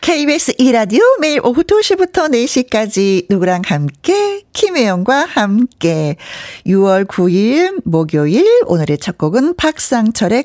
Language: Korean